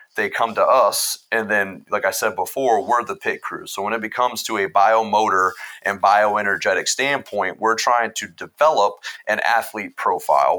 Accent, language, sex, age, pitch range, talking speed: American, English, male, 30-49, 100-120 Hz, 175 wpm